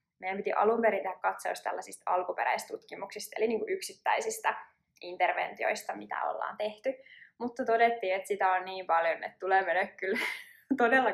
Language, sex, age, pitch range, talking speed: Finnish, female, 20-39, 185-230 Hz, 150 wpm